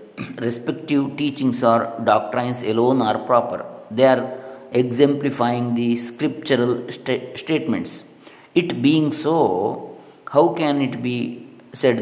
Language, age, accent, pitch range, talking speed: Kannada, 50-69, native, 115-145 Hz, 110 wpm